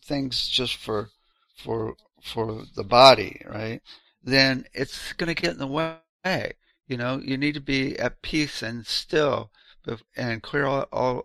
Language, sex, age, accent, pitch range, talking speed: English, male, 60-79, American, 100-135 Hz, 155 wpm